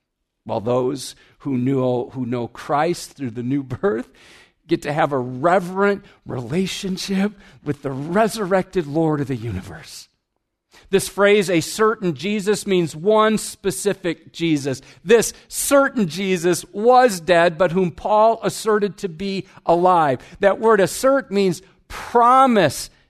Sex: male